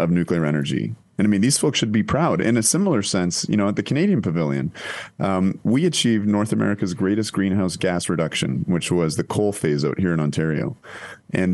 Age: 30-49